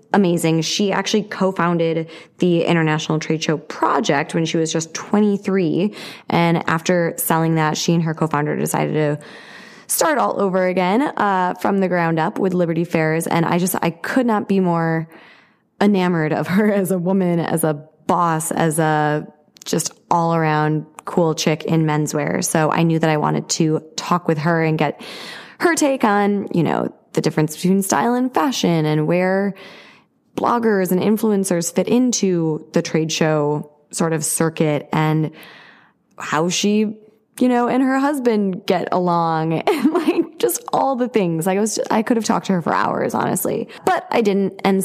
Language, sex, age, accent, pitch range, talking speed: English, female, 20-39, American, 160-210 Hz, 175 wpm